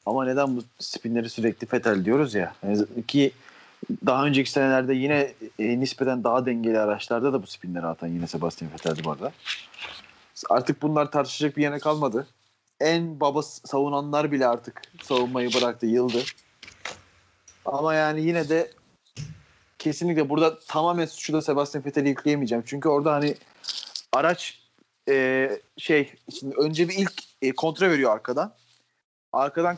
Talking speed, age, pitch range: 135 wpm, 30-49, 125-165 Hz